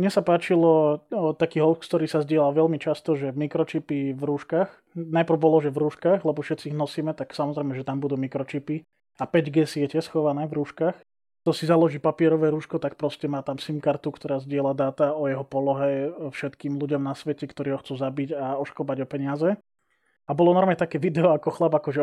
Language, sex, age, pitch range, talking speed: Slovak, male, 20-39, 145-170 Hz, 195 wpm